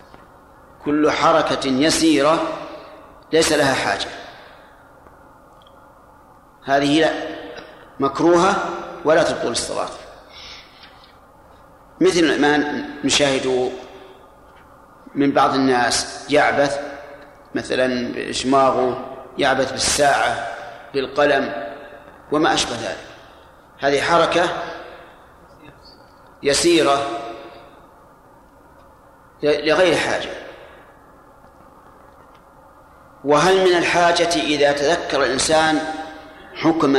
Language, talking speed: Arabic, 65 wpm